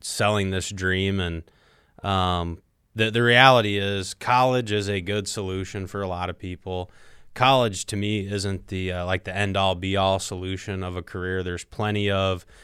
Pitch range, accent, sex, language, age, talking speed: 90-105 Hz, American, male, English, 20-39, 180 wpm